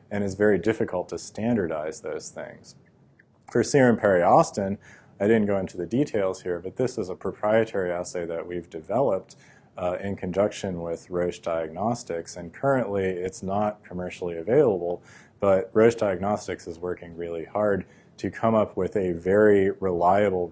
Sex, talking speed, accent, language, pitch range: male, 155 wpm, American, English, 90-110 Hz